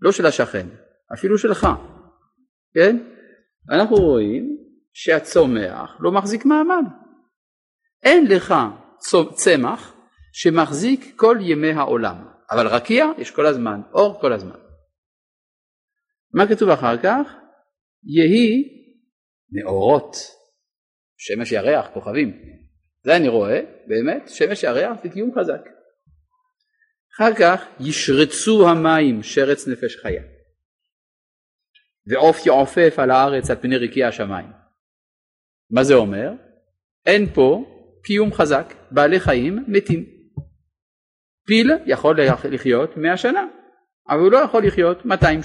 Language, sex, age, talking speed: Hebrew, male, 50-69, 105 wpm